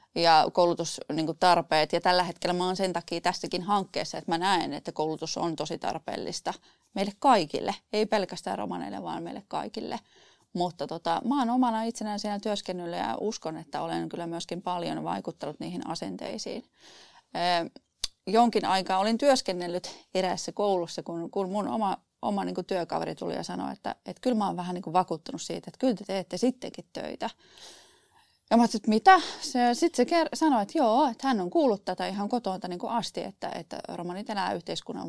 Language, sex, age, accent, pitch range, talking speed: Finnish, female, 30-49, native, 175-225 Hz, 175 wpm